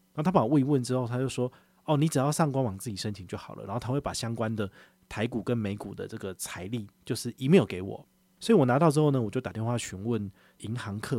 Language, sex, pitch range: Chinese, male, 105-145 Hz